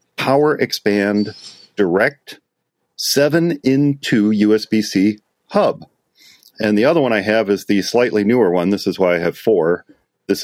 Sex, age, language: male, 40-59, English